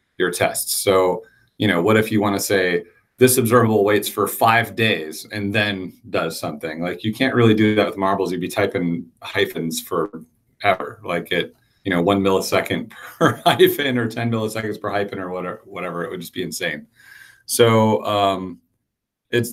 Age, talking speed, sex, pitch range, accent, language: 30-49, 180 wpm, male, 95-125 Hz, American, English